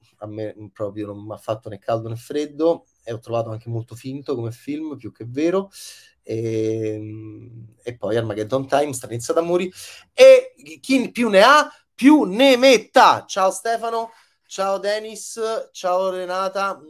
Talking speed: 155 wpm